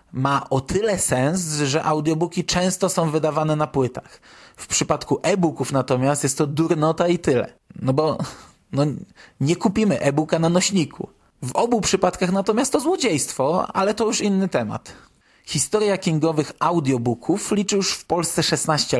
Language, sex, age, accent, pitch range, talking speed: Polish, male, 20-39, native, 140-180 Hz, 150 wpm